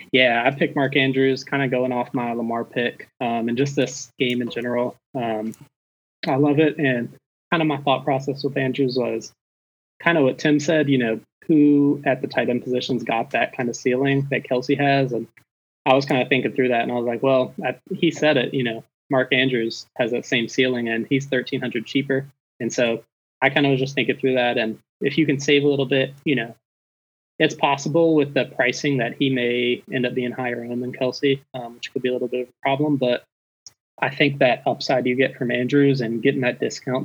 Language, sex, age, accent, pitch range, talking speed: English, male, 20-39, American, 120-140 Hz, 225 wpm